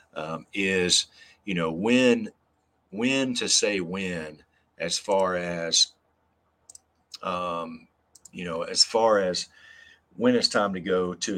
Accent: American